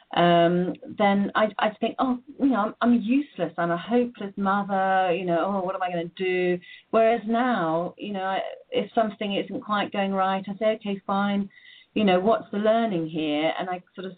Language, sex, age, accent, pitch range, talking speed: English, female, 40-59, British, 175-220 Hz, 210 wpm